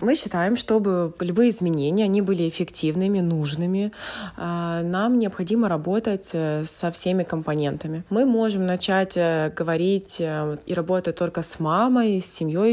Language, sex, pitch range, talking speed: Ukrainian, female, 160-195 Hz, 125 wpm